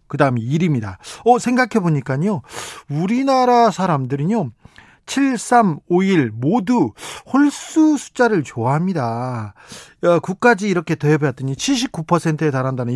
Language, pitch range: Korean, 135-190 Hz